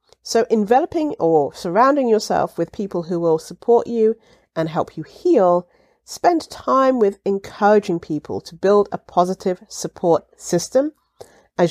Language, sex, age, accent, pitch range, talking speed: English, female, 50-69, British, 160-235 Hz, 140 wpm